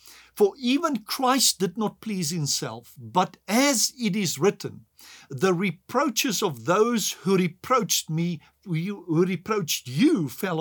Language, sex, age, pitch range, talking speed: English, male, 50-69, 145-205 Hz, 130 wpm